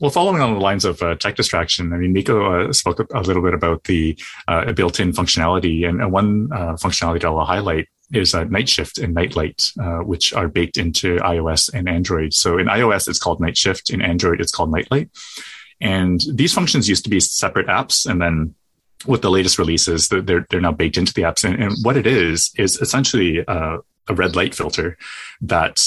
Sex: male